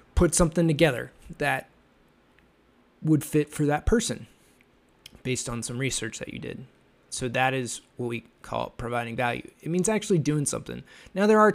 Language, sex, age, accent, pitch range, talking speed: English, male, 20-39, American, 120-145 Hz, 165 wpm